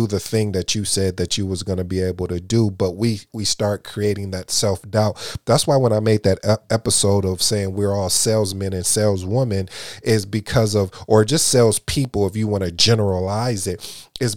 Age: 30-49